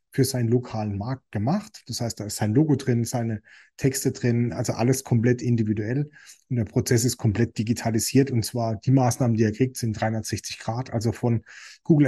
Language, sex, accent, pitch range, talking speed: German, male, German, 115-130 Hz, 190 wpm